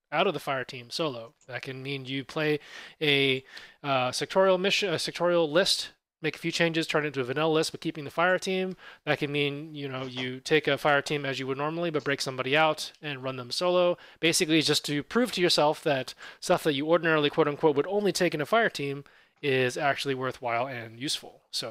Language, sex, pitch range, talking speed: English, male, 135-165 Hz, 225 wpm